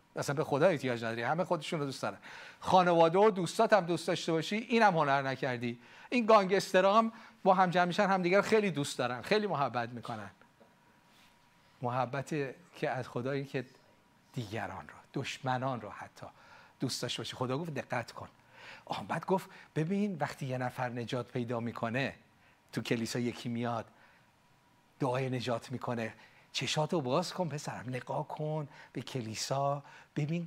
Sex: male